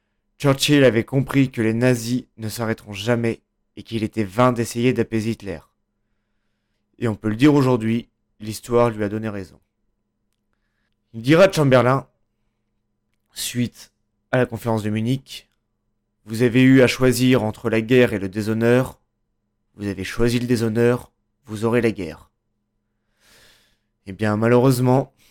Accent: French